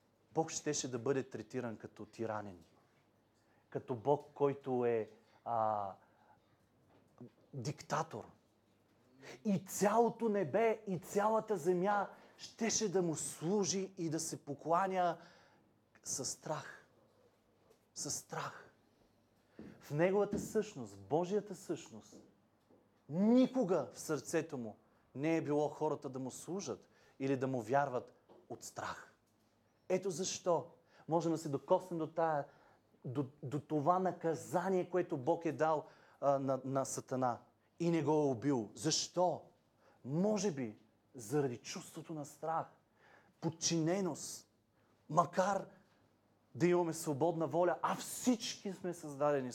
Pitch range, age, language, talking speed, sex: 115-175 Hz, 30-49, Bulgarian, 115 wpm, male